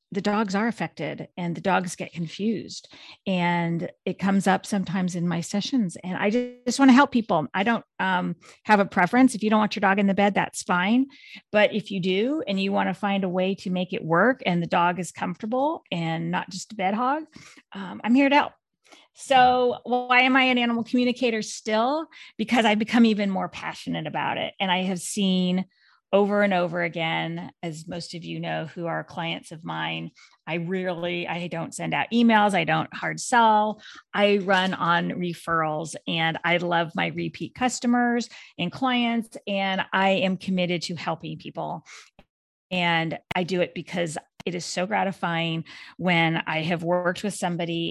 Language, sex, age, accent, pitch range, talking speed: English, female, 40-59, American, 170-220 Hz, 190 wpm